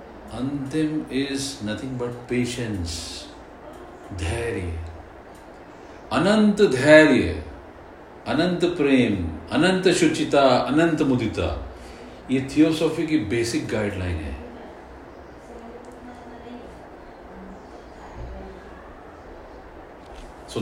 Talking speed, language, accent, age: 60 wpm, Hindi, native, 50-69